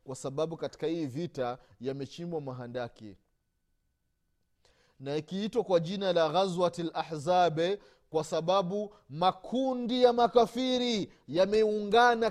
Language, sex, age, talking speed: Swahili, male, 30-49, 95 wpm